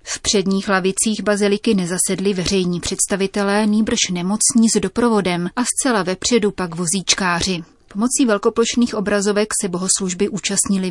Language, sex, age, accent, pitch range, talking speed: Czech, female, 30-49, native, 185-215 Hz, 120 wpm